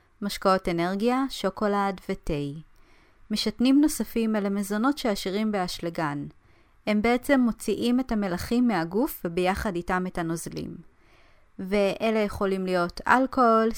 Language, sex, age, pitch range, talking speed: Hebrew, female, 30-49, 185-225 Hz, 105 wpm